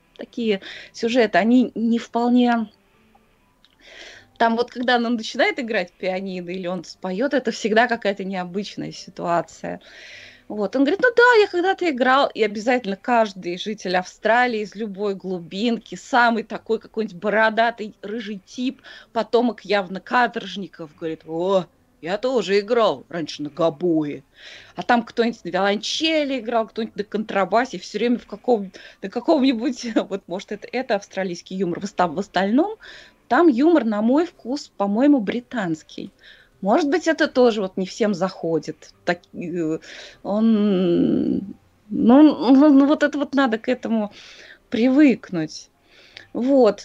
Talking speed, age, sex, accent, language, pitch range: 135 wpm, 20-39, female, native, Russian, 195-260 Hz